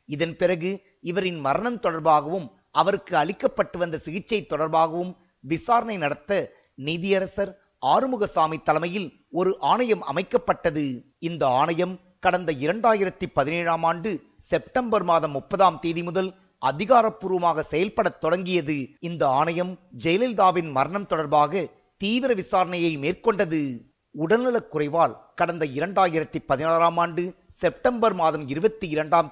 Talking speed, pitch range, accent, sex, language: 95 wpm, 160-200 Hz, native, male, Tamil